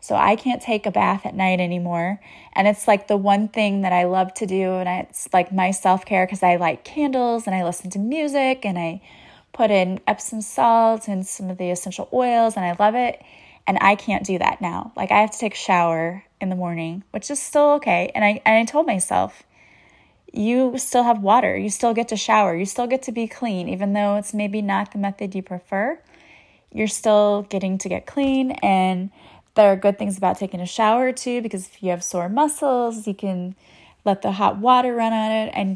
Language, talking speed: English, 225 wpm